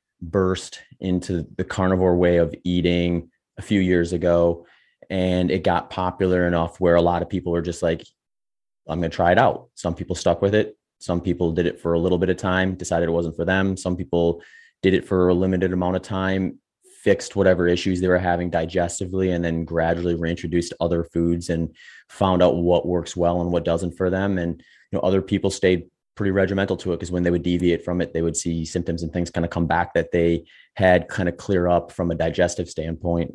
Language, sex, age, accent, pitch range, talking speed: English, male, 30-49, American, 85-95 Hz, 220 wpm